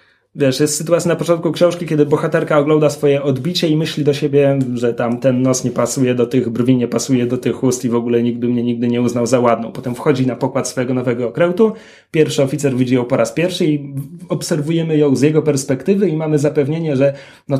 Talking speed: 220 wpm